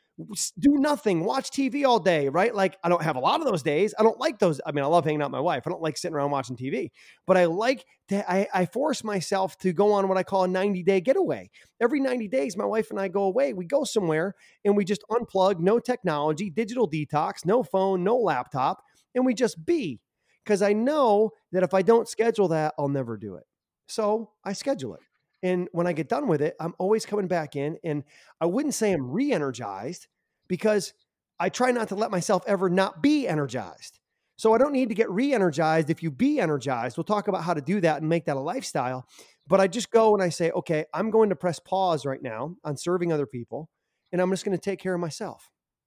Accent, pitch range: American, 155-215 Hz